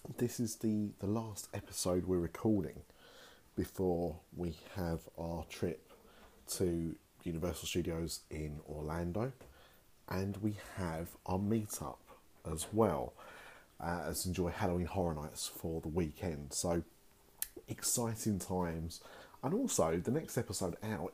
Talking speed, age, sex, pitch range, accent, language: 120 wpm, 30-49, male, 85-105 Hz, British, English